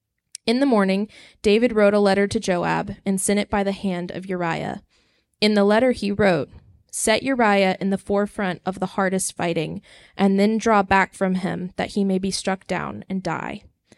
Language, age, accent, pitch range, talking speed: English, 10-29, American, 185-210 Hz, 195 wpm